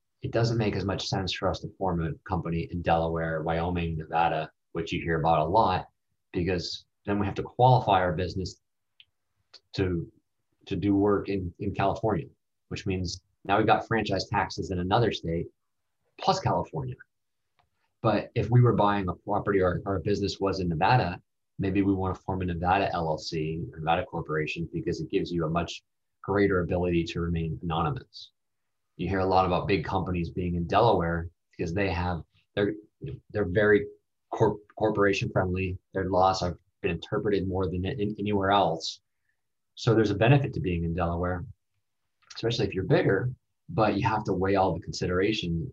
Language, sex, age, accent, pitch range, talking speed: English, male, 20-39, American, 85-105 Hz, 175 wpm